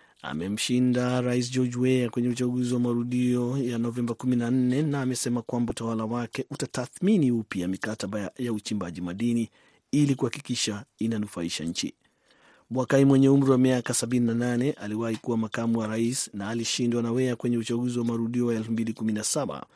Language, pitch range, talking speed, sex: Swahili, 115-135 Hz, 145 wpm, male